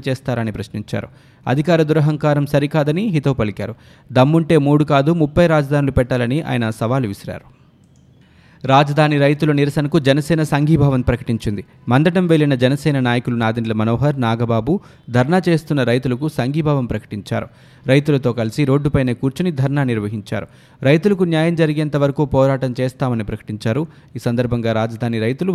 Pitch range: 125-155 Hz